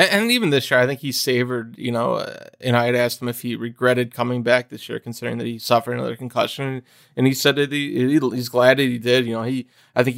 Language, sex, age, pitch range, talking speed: English, male, 20-39, 115-130 Hz, 255 wpm